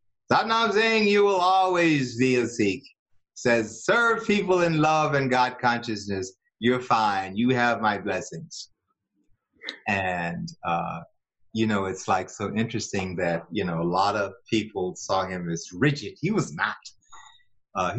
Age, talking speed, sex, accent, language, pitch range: 30-49, 150 wpm, male, American, English, 105-180 Hz